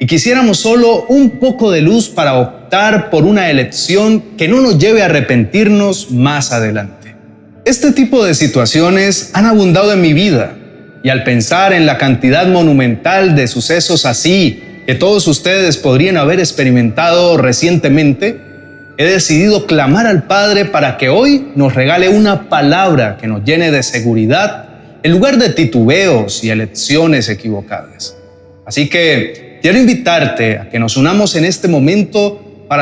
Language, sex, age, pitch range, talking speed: Spanish, male, 30-49, 125-190 Hz, 150 wpm